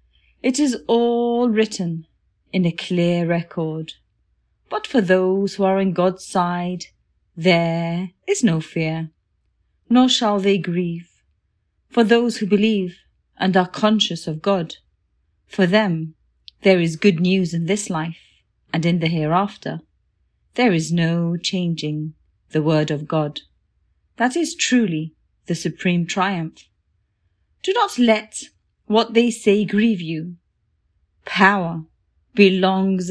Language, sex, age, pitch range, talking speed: English, female, 30-49, 155-200 Hz, 125 wpm